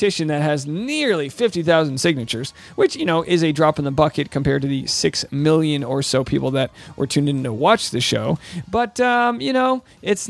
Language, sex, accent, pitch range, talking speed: English, male, American, 150-205 Hz, 205 wpm